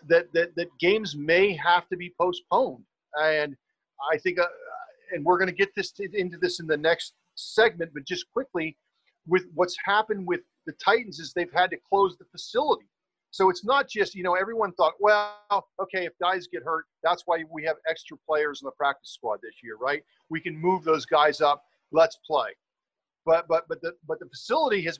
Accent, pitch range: American, 160-195 Hz